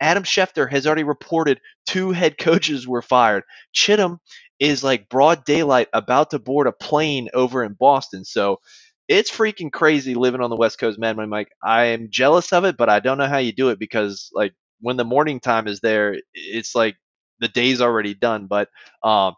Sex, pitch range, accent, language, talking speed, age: male, 115-150 Hz, American, English, 200 wpm, 20-39